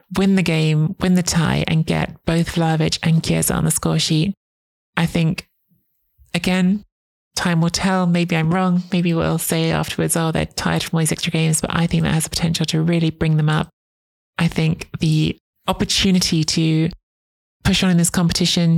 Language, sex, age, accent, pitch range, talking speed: English, male, 20-39, British, 160-175 Hz, 190 wpm